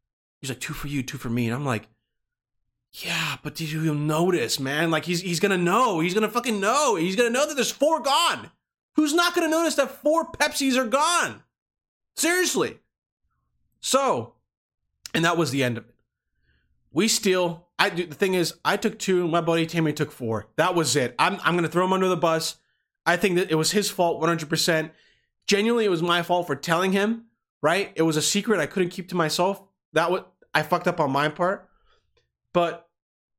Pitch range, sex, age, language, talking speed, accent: 155-240 Hz, male, 30-49, English, 200 wpm, American